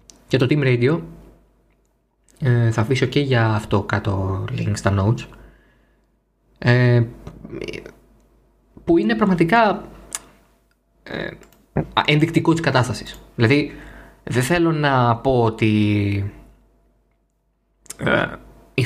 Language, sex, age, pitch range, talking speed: Greek, male, 20-39, 120-165 Hz, 85 wpm